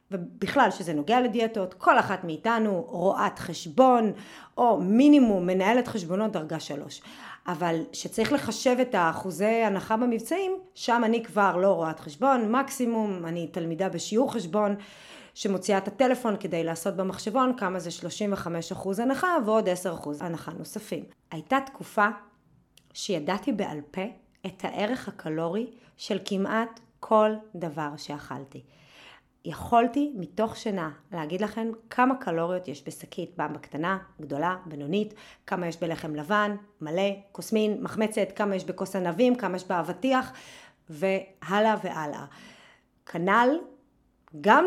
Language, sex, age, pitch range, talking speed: Hebrew, female, 30-49, 180-235 Hz, 120 wpm